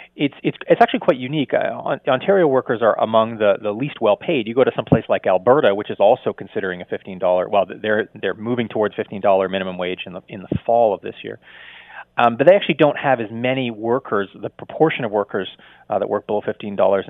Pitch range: 100-140 Hz